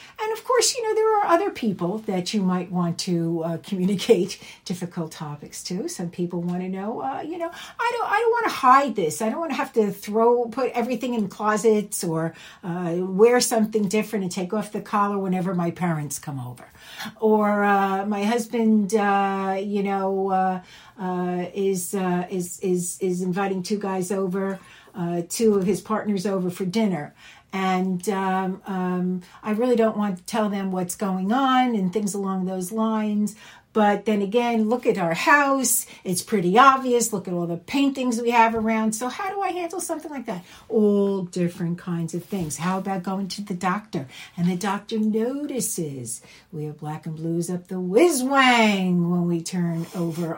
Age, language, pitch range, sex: 60-79, English, 175-225 Hz, female